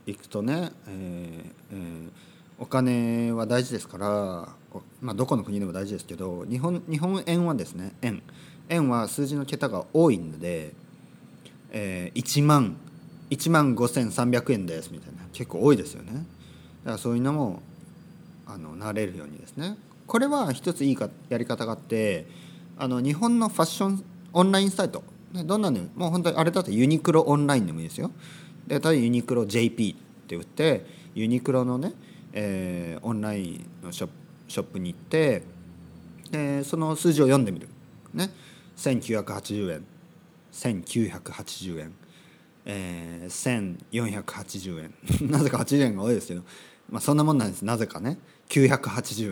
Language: Japanese